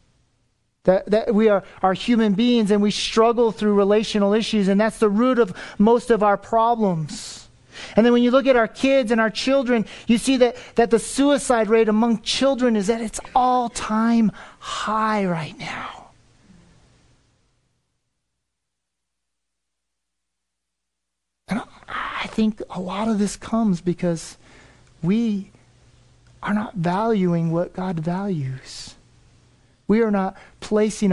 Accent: American